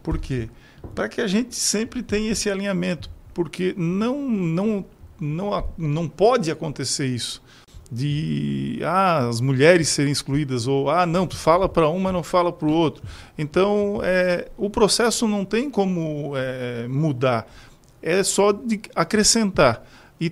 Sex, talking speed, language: male, 150 wpm, Portuguese